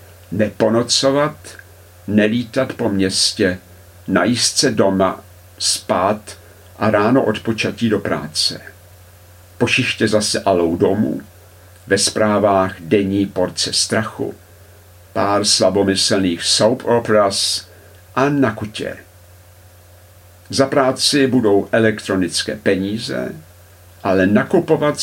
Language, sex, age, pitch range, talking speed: Czech, male, 50-69, 90-110 Hz, 85 wpm